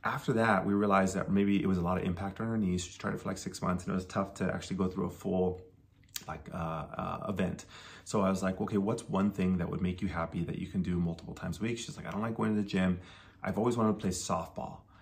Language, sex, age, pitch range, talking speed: English, male, 30-49, 90-100 Hz, 290 wpm